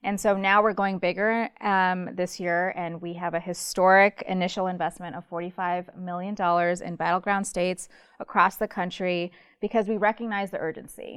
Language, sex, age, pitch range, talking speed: English, female, 20-39, 175-205 Hz, 160 wpm